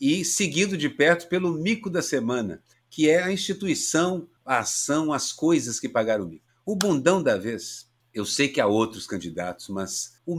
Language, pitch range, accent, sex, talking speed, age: Portuguese, 120-170 Hz, Brazilian, male, 185 wpm, 50-69